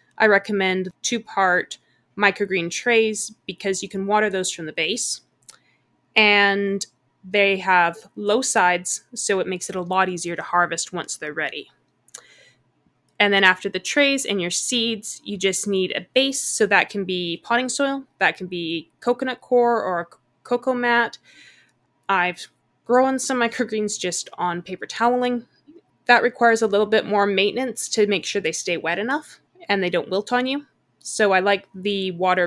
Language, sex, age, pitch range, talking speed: English, female, 20-39, 185-230 Hz, 165 wpm